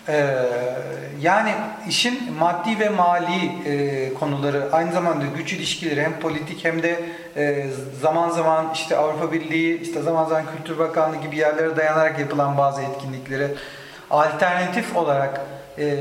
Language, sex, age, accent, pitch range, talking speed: Turkish, male, 40-59, native, 140-180 Hz, 135 wpm